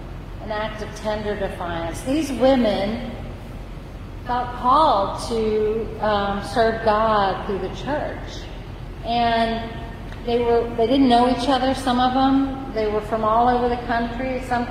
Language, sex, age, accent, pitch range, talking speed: English, female, 40-59, American, 225-255 Hz, 140 wpm